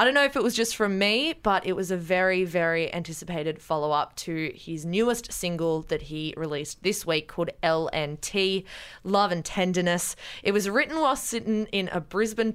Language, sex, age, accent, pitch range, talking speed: English, female, 20-39, Australian, 165-210 Hz, 185 wpm